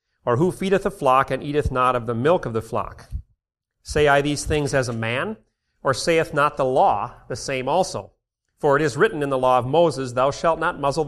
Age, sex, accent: 40-59, male, American